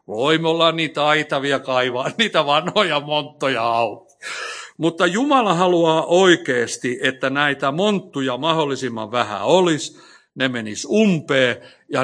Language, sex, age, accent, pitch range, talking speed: Finnish, male, 60-79, native, 125-160 Hz, 115 wpm